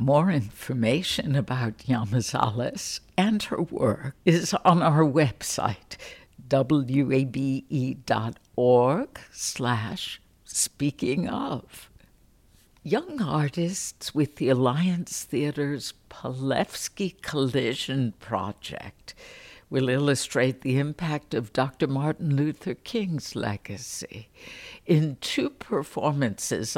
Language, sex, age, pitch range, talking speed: English, female, 60-79, 125-165 Hz, 80 wpm